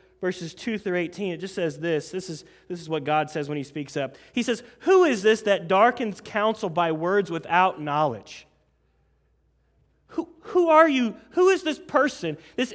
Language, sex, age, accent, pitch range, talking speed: English, male, 30-49, American, 180-240 Hz, 190 wpm